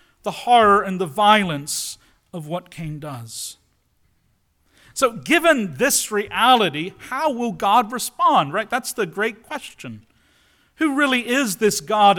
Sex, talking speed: male, 135 wpm